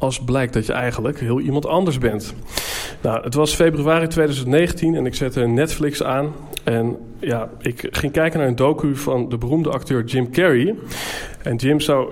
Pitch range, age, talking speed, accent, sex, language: 120-155 Hz, 40-59, 180 wpm, Dutch, male, Dutch